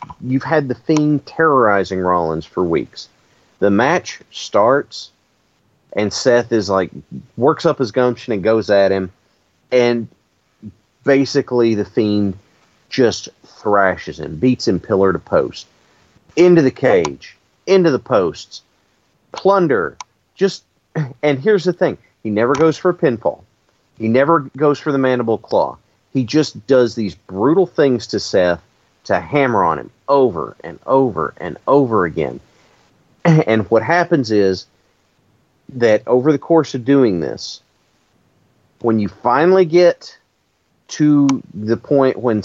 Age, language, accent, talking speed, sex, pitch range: 40-59, English, American, 135 wpm, male, 100-140 Hz